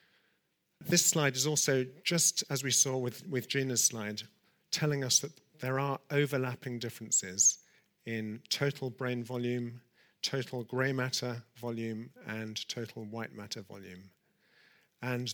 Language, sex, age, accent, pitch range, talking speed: English, male, 50-69, British, 115-130 Hz, 130 wpm